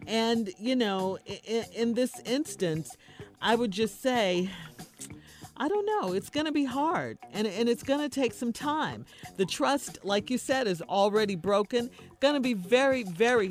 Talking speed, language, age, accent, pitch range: 180 wpm, English, 50-69, American, 175-240 Hz